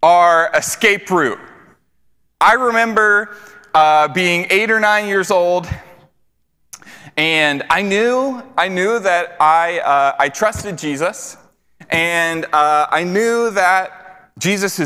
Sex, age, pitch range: male, 20-39, 155-215 Hz